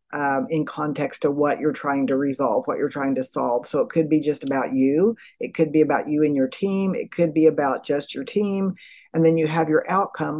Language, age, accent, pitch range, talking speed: English, 50-69, American, 145-165 Hz, 240 wpm